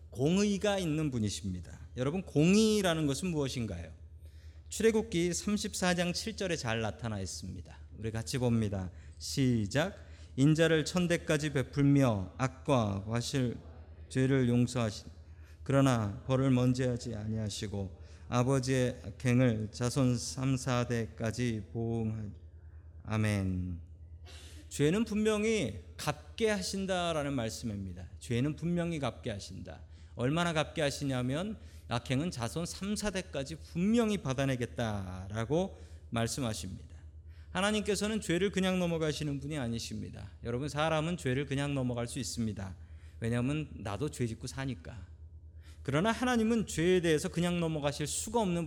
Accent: native